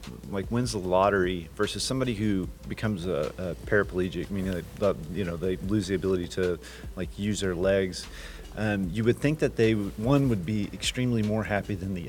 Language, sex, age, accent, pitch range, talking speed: English, male, 30-49, American, 90-110 Hz, 195 wpm